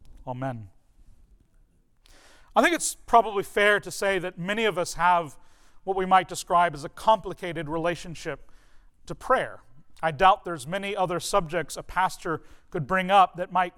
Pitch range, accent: 160-210 Hz, American